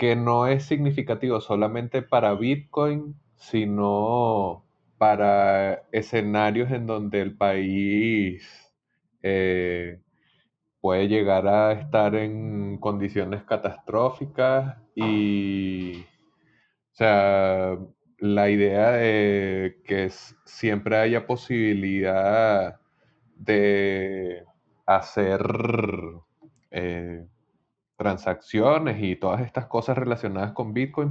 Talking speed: 85 wpm